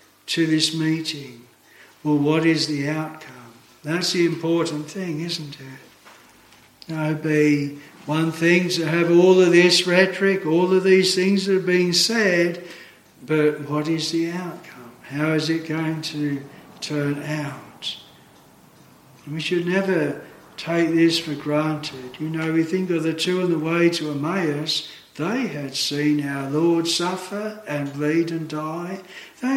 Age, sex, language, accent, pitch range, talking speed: 60-79, male, English, Australian, 155-185 Hz, 150 wpm